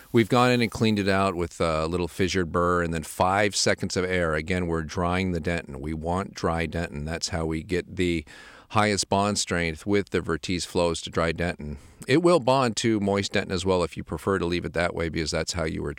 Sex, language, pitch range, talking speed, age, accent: male, English, 85-105 Hz, 235 wpm, 40-59, American